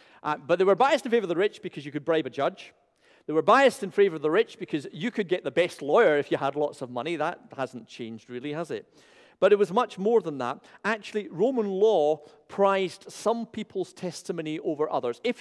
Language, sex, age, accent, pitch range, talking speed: English, male, 40-59, British, 150-220 Hz, 235 wpm